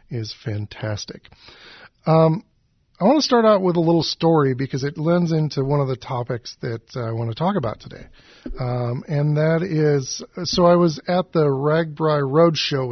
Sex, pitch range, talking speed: male, 120-150 Hz, 175 wpm